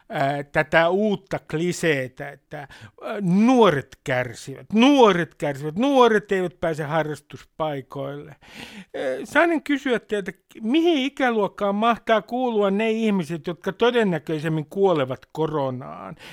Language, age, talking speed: Finnish, 60-79, 100 wpm